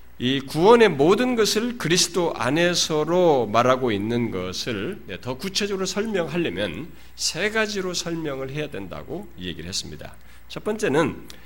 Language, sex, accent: Korean, male, native